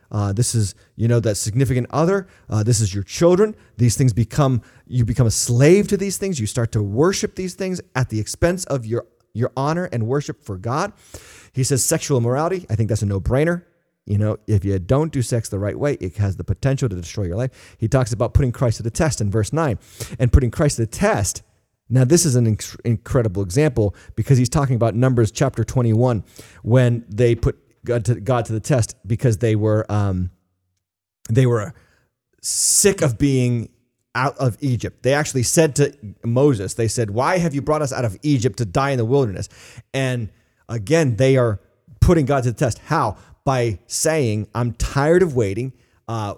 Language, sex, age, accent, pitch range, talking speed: English, male, 30-49, American, 110-140 Hz, 200 wpm